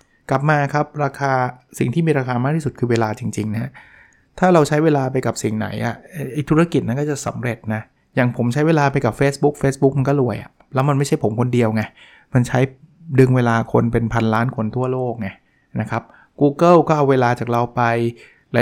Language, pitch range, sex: Thai, 115-140 Hz, male